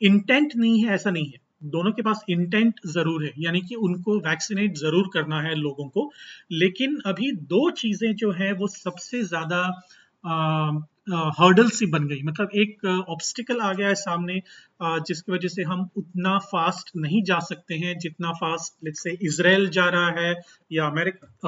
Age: 30-49